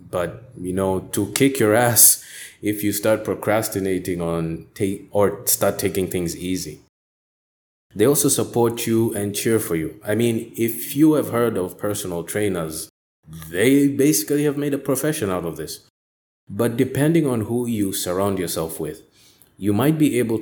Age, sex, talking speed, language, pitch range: 20-39, male, 165 wpm, English, 85-120 Hz